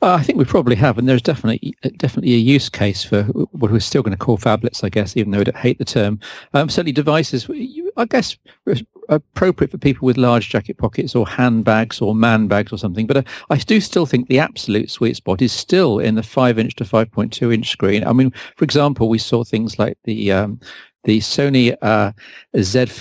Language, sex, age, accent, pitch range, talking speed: English, male, 50-69, British, 110-140 Hz, 205 wpm